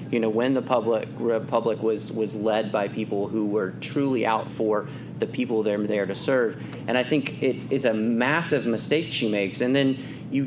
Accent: American